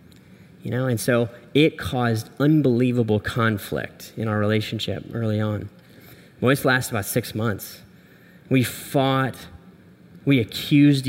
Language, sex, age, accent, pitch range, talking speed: English, male, 10-29, American, 120-145 Hz, 125 wpm